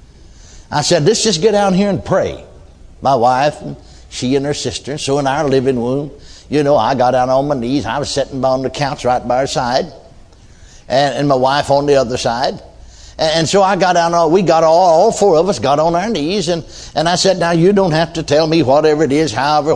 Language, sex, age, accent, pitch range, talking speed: English, male, 60-79, American, 125-175 Hz, 240 wpm